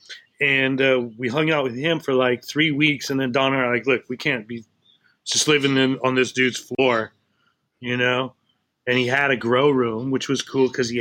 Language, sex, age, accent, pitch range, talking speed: English, male, 30-49, American, 120-145 Hz, 220 wpm